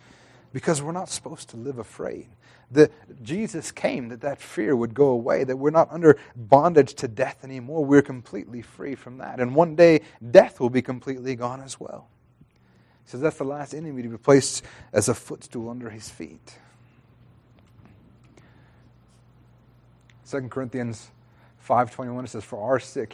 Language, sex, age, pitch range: English, male, 30-49, 115-130 Hz